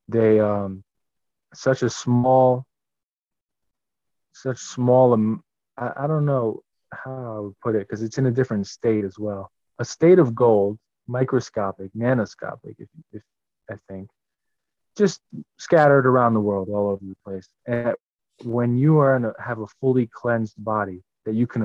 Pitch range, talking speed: 100-125 Hz, 160 wpm